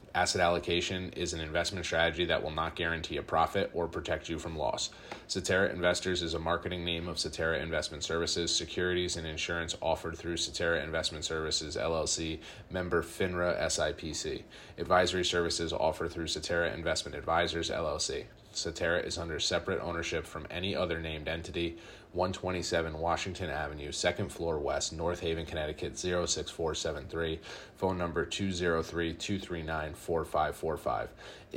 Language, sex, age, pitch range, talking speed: English, male, 30-49, 80-90 Hz, 135 wpm